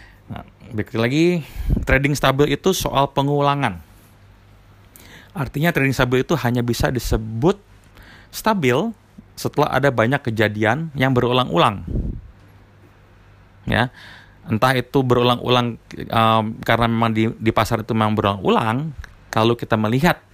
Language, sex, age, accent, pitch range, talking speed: Indonesian, male, 30-49, native, 100-125 Hz, 110 wpm